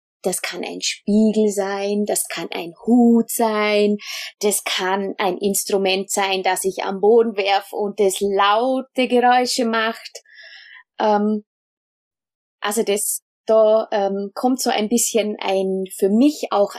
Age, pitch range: 20-39, 200-235 Hz